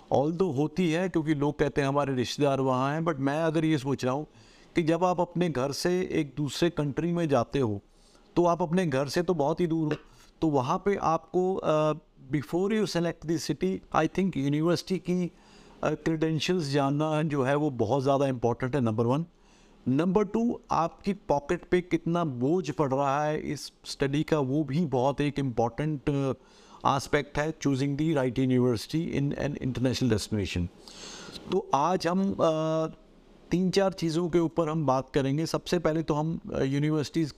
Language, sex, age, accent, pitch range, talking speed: Hindi, male, 50-69, native, 140-170 Hz, 180 wpm